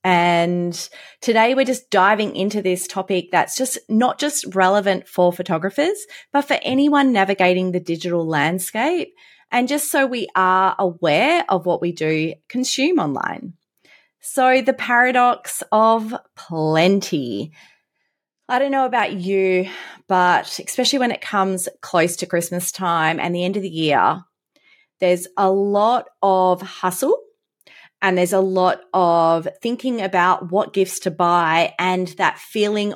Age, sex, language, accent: 30-49, female, English, Australian